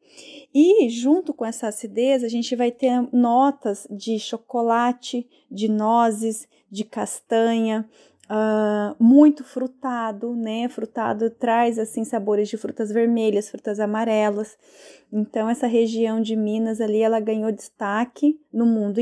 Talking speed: 125 wpm